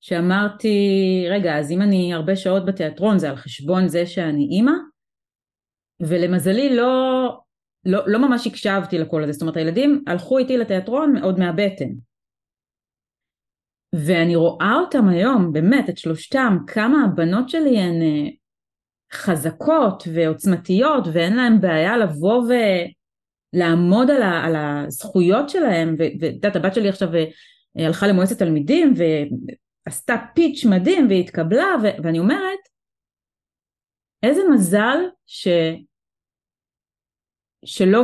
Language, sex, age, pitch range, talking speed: Hebrew, female, 30-49, 170-250 Hz, 115 wpm